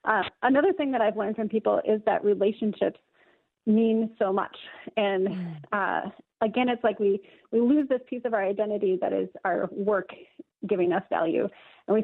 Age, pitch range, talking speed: 30-49, 210-275 Hz, 180 wpm